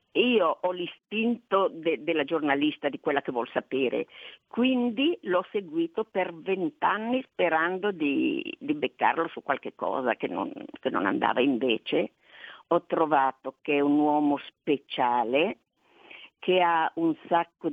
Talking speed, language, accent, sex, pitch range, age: 130 wpm, Italian, native, female, 155-215 Hz, 50-69